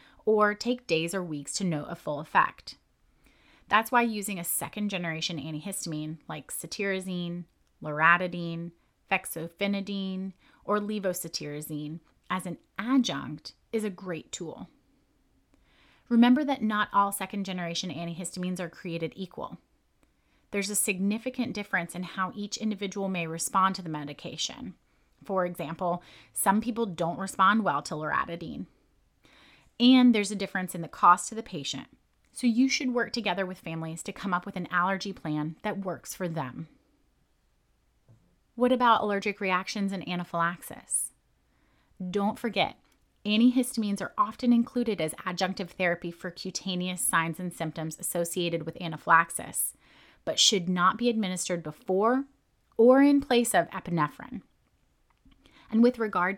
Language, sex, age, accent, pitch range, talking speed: English, female, 30-49, American, 170-215 Hz, 135 wpm